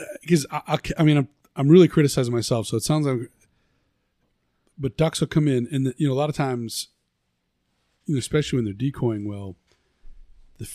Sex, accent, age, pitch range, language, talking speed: male, American, 40-59, 110-140 Hz, English, 185 wpm